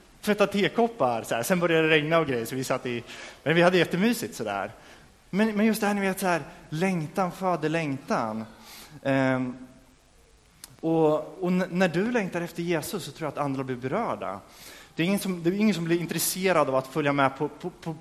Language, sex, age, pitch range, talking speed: Swedish, male, 20-39, 130-175 Hz, 210 wpm